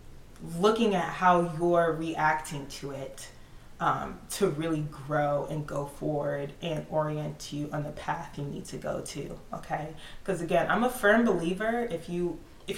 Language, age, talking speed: English, 20-39, 155 wpm